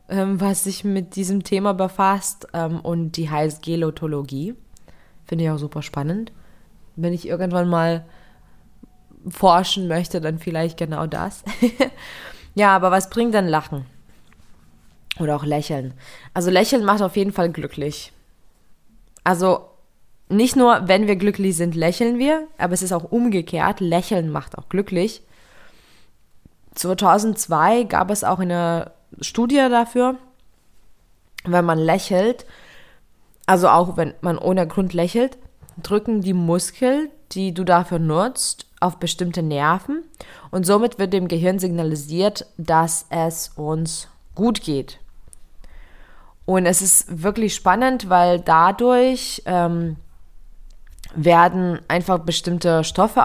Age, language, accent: 20-39, German, German